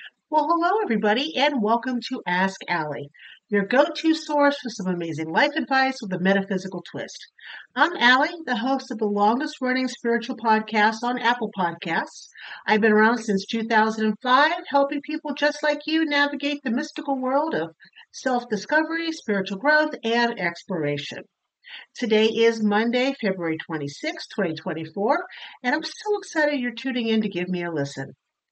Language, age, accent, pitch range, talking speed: English, 50-69, American, 200-290 Hz, 145 wpm